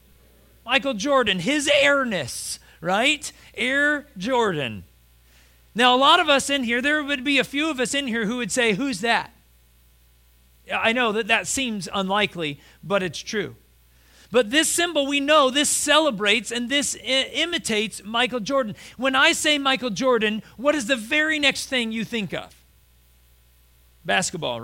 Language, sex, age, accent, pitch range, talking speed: English, male, 40-59, American, 170-275 Hz, 155 wpm